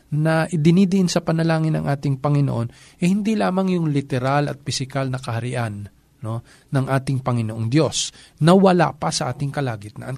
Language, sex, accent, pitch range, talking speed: Filipino, male, native, 135-190 Hz, 160 wpm